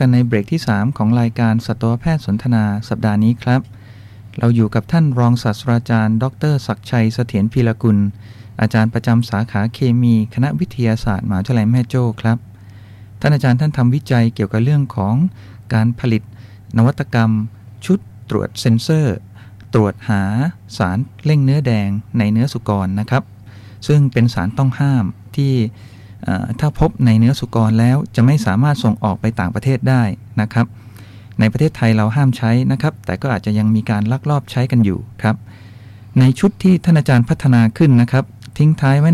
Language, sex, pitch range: Thai, male, 105-130 Hz